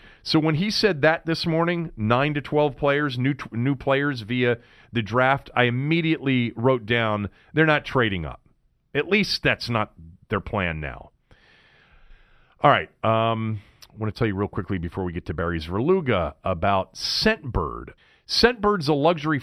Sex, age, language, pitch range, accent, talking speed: male, 40-59, English, 105-145 Hz, American, 165 wpm